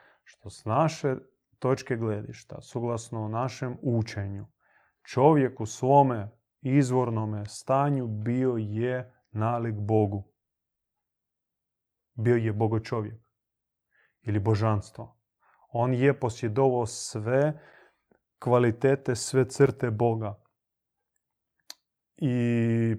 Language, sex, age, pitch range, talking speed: Croatian, male, 30-49, 110-130 Hz, 85 wpm